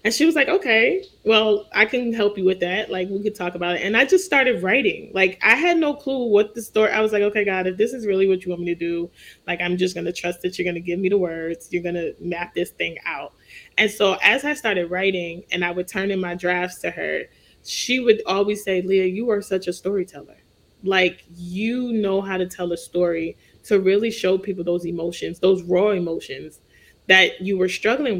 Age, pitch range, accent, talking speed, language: 20-39, 180-220 Hz, American, 240 wpm, English